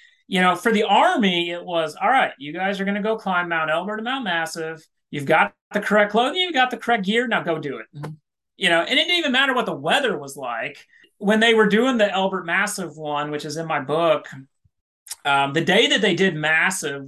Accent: American